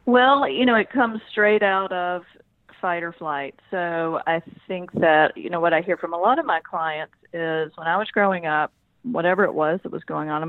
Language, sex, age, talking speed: English, female, 40-59, 230 wpm